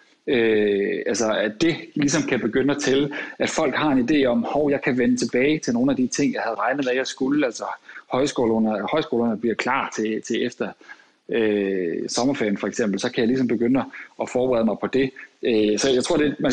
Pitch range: 115-140 Hz